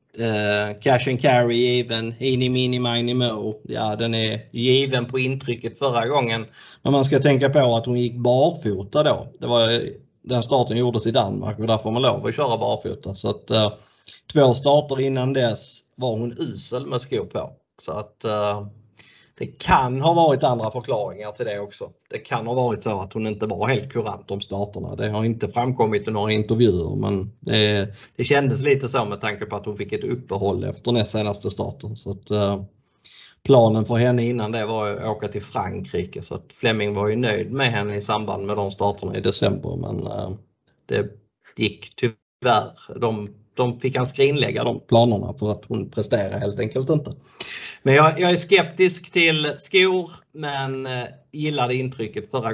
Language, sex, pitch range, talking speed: Swedish, male, 105-130 Hz, 185 wpm